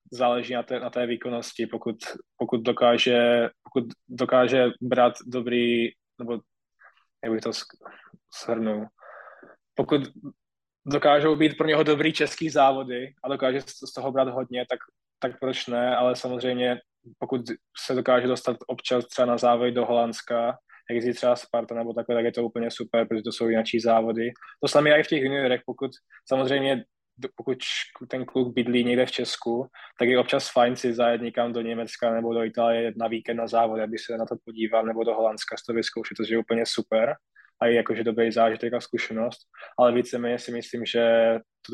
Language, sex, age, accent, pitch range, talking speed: Czech, male, 20-39, native, 115-125 Hz, 190 wpm